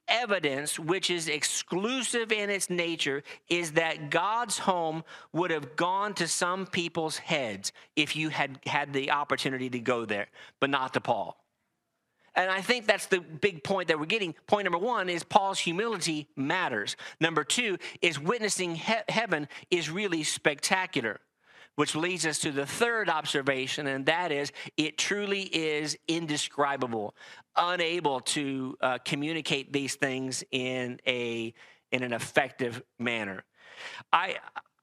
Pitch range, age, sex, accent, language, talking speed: 140-180 Hz, 40-59, male, American, English, 145 wpm